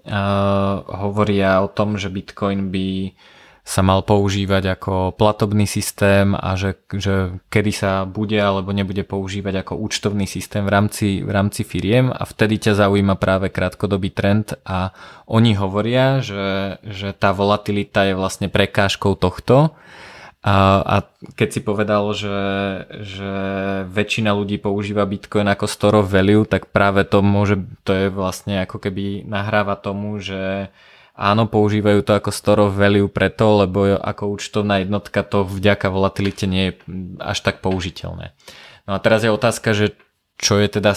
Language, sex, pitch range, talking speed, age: Slovak, male, 95-105 Hz, 150 wpm, 20-39